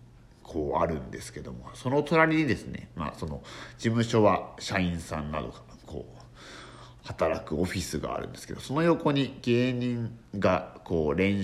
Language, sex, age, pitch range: Japanese, male, 60-79, 85-130 Hz